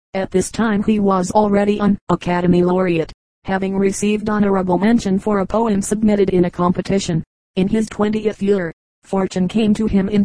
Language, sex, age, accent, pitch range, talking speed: English, female, 30-49, American, 190-215 Hz, 170 wpm